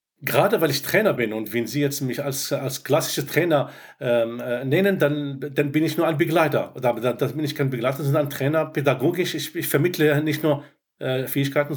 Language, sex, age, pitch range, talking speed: German, male, 50-69, 130-155 Hz, 210 wpm